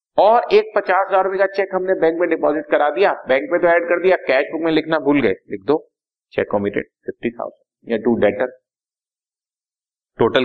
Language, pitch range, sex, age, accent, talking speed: Hindi, 110-170 Hz, male, 30-49, native, 180 wpm